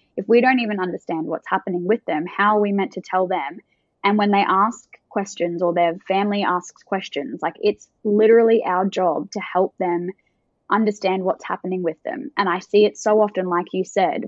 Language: English